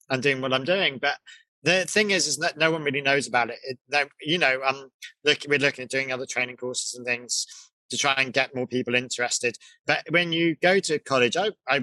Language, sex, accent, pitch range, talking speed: English, male, British, 130-170 Hz, 240 wpm